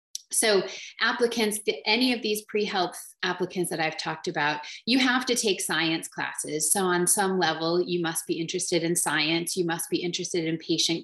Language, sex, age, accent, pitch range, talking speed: English, female, 30-49, American, 175-225 Hz, 180 wpm